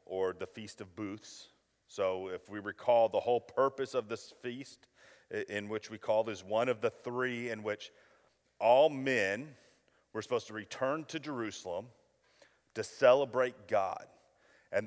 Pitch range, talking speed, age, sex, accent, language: 110-140 Hz, 155 wpm, 40-59, male, American, English